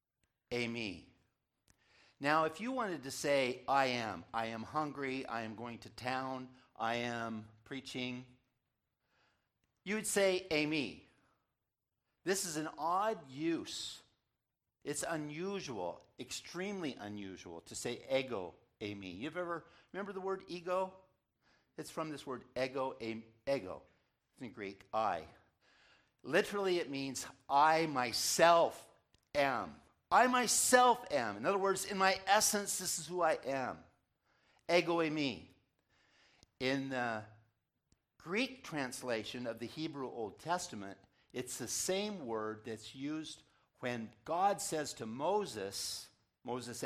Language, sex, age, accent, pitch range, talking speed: English, male, 60-79, American, 115-175 Hz, 125 wpm